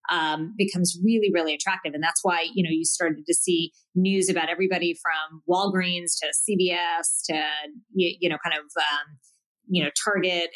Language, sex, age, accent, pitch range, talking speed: English, female, 30-49, American, 160-190 Hz, 175 wpm